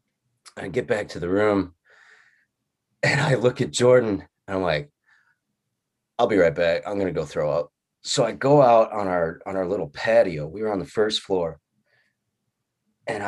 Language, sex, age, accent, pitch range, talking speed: English, male, 30-49, American, 110-185 Hz, 185 wpm